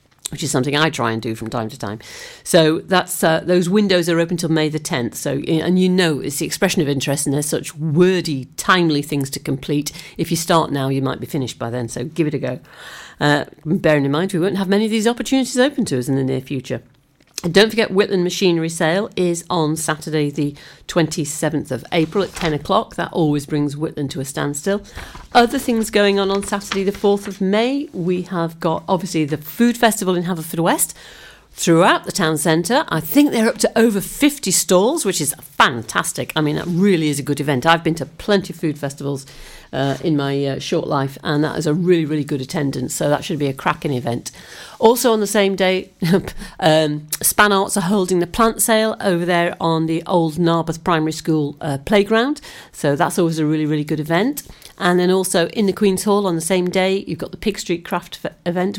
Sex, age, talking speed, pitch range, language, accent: female, 50-69, 220 wpm, 150-190 Hz, English, British